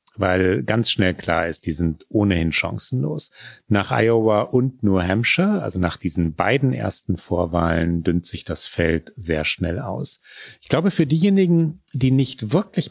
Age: 40-59